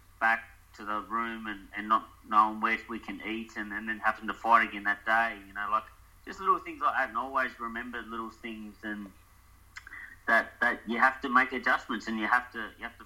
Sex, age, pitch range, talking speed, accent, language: male, 30-49, 95-115 Hz, 225 wpm, Australian, English